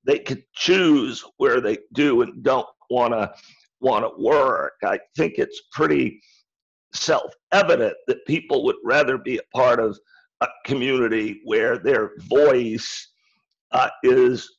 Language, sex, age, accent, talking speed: English, male, 50-69, American, 130 wpm